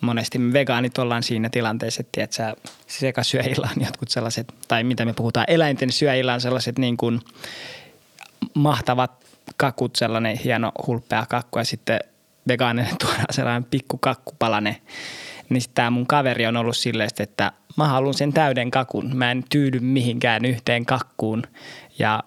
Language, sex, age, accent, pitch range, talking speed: Finnish, male, 20-39, native, 115-130 Hz, 150 wpm